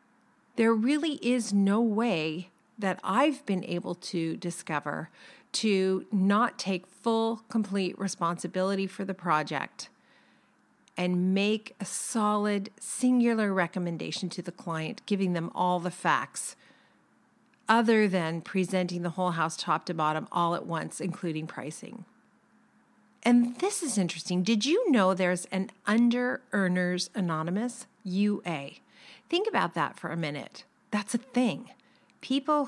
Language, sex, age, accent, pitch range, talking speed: English, female, 40-59, American, 180-235 Hz, 130 wpm